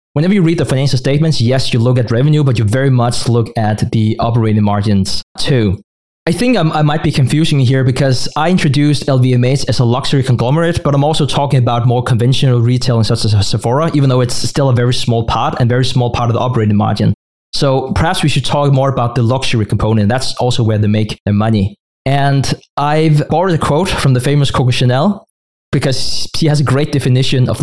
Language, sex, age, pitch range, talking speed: English, male, 20-39, 120-150 Hz, 215 wpm